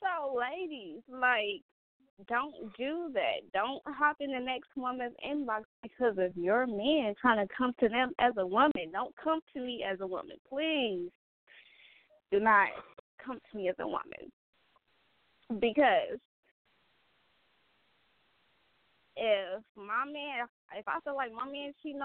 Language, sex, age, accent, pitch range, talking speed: English, female, 10-29, American, 205-265 Hz, 140 wpm